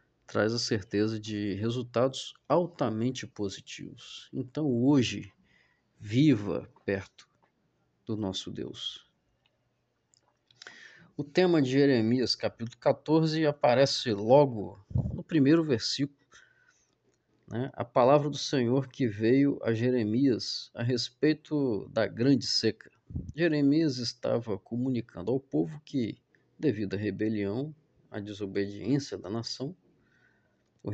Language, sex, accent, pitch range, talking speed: Portuguese, male, Brazilian, 105-140 Hz, 105 wpm